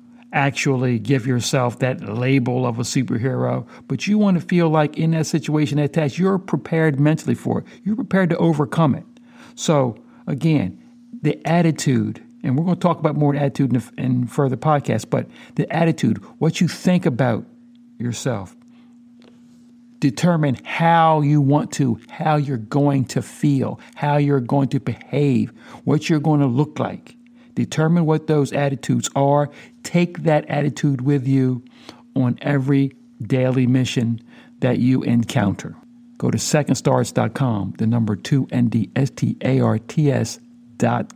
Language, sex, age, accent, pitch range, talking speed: English, male, 60-79, American, 130-165 Hz, 145 wpm